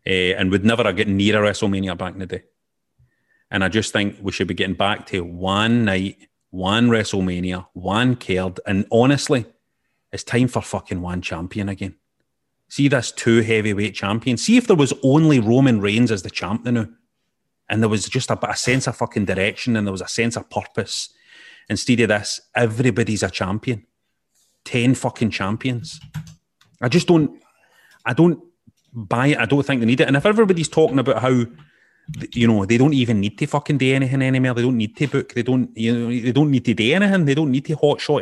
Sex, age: male, 30-49